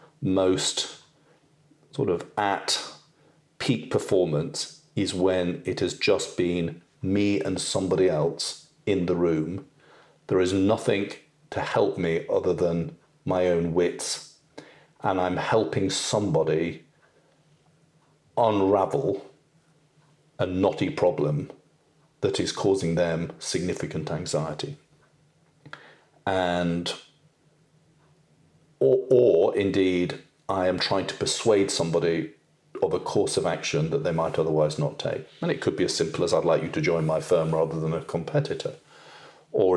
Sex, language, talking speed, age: male, English, 125 wpm, 40-59